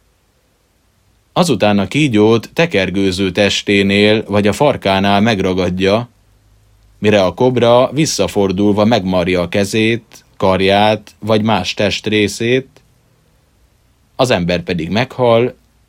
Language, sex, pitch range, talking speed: Hungarian, male, 95-110 Hz, 95 wpm